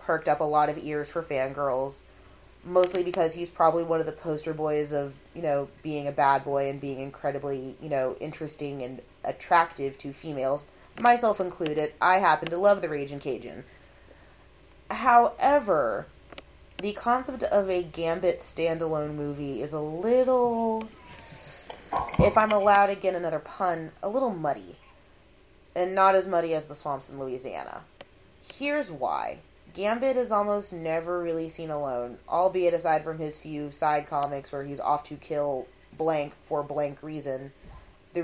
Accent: American